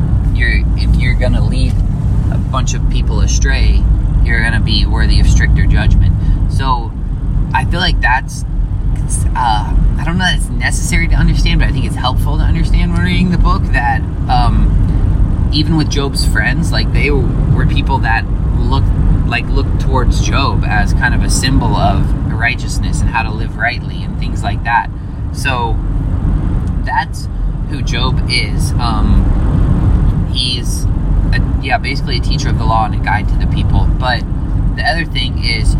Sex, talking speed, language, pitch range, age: male, 170 wpm, English, 90-115 Hz, 20-39